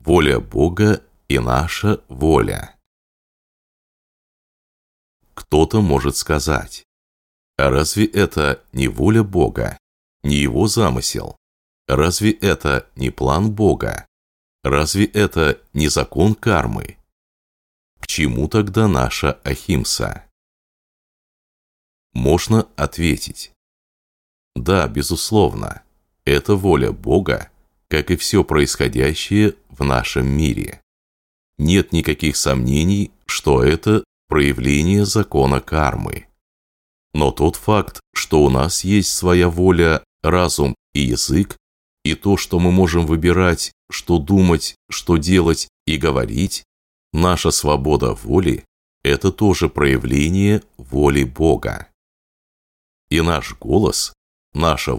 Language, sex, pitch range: Russian, male, 70-95 Hz